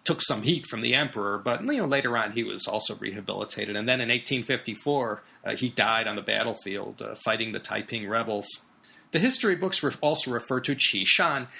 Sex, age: male, 30-49